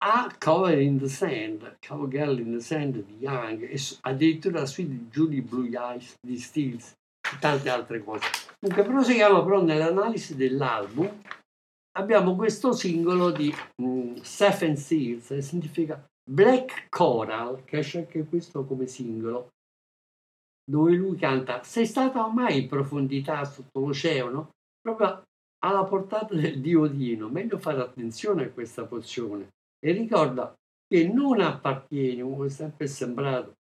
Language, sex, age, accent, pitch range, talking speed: Italian, male, 60-79, native, 125-185 Hz, 140 wpm